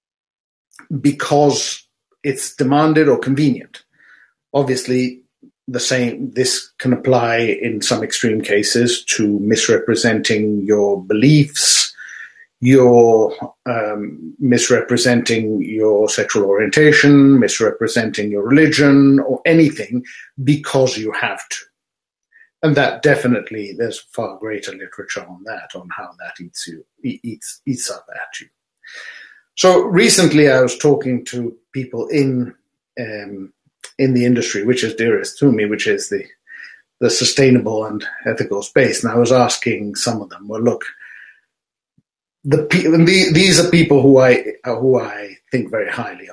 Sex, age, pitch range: male, 50-69, 120-155 Hz